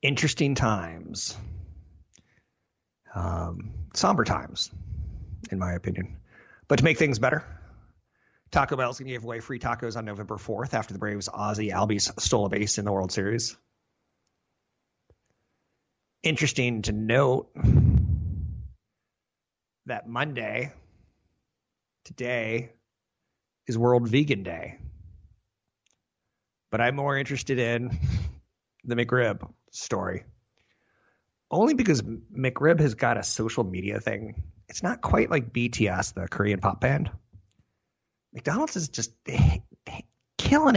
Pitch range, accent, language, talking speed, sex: 100-125 Hz, American, English, 110 wpm, male